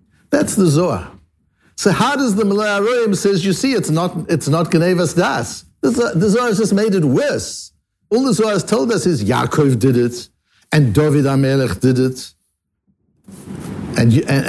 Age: 60-79